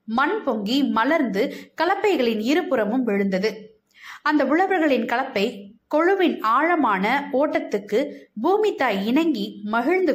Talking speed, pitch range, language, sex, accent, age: 95 wpm, 210-325 Hz, Tamil, female, native, 20-39